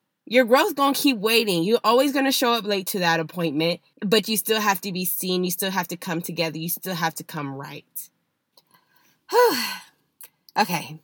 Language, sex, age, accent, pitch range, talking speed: English, female, 20-39, American, 165-215 Hz, 200 wpm